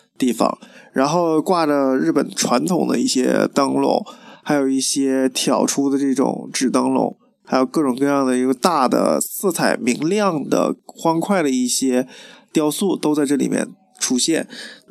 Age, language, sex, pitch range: 20-39, Chinese, male, 130-170 Hz